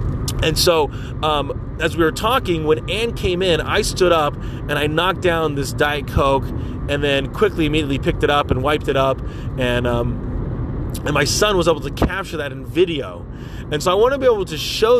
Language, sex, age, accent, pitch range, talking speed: English, male, 30-49, American, 125-165 Hz, 210 wpm